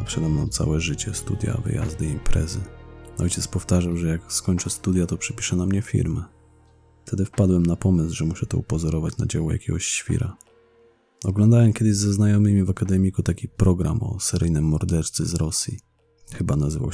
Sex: male